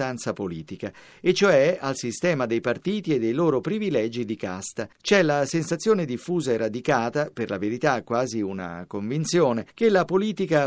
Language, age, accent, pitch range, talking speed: Italian, 50-69, native, 115-175 Hz, 155 wpm